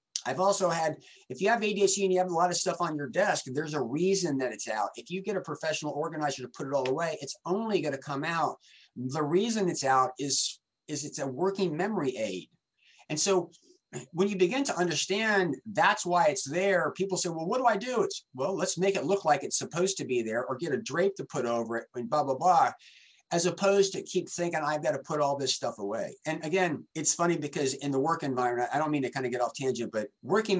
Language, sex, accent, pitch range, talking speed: English, male, American, 135-185 Hz, 245 wpm